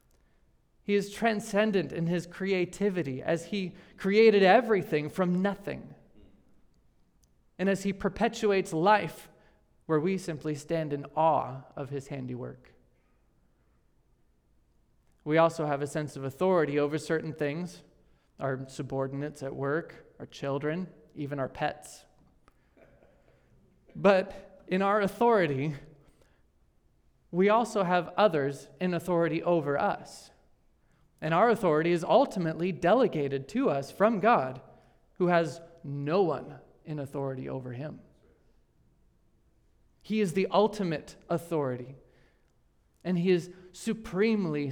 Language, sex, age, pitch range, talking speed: English, male, 30-49, 140-195 Hz, 115 wpm